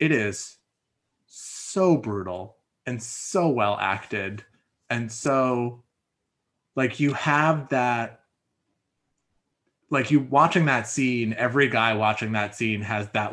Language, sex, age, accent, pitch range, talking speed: English, male, 20-39, American, 105-130 Hz, 115 wpm